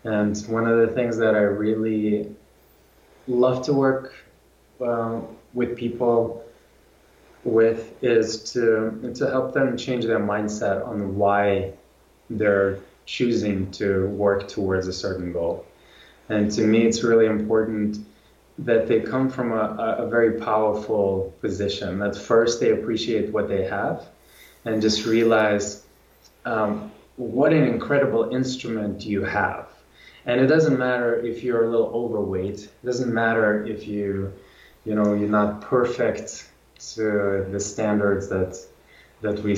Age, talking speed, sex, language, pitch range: 20-39, 135 wpm, male, English, 100-115 Hz